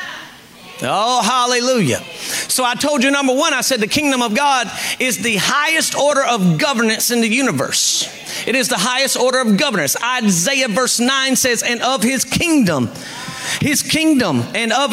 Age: 40-59